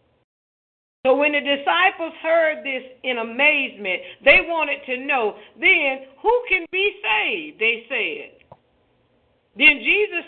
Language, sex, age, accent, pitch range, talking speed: English, female, 40-59, American, 270-340 Hz, 125 wpm